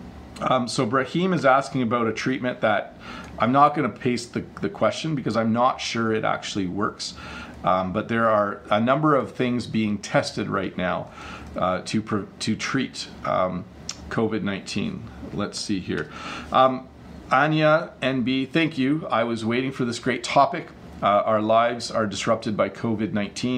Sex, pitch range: male, 100-125 Hz